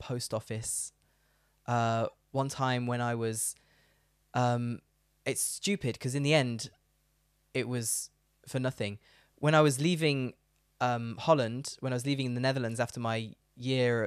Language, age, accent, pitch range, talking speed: English, 20-39, British, 115-145 Hz, 150 wpm